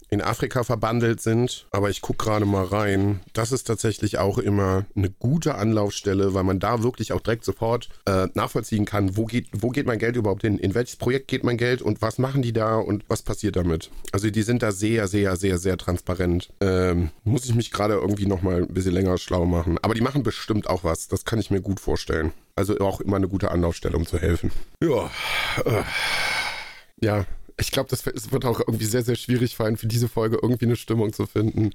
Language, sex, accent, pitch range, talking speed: German, male, German, 100-125 Hz, 210 wpm